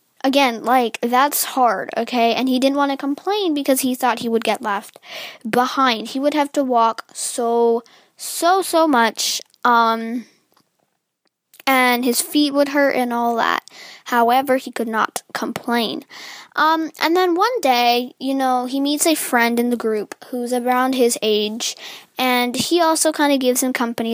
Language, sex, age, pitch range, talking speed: English, female, 10-29, 240-305 Hz, 170 wpm